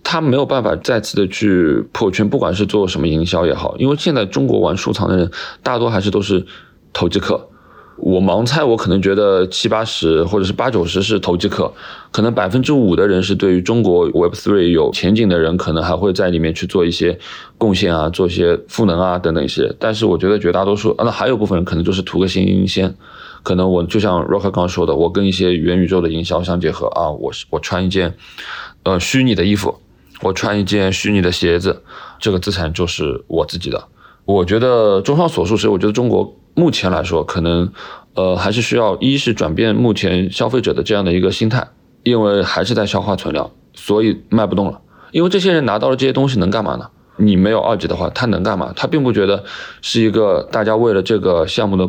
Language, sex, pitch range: Chinese, male, 90-110 Hz